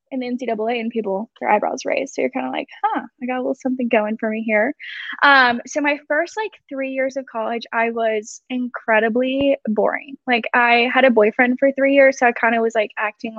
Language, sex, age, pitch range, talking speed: English, female, 10-29, 220-260 Hz, 230 wpm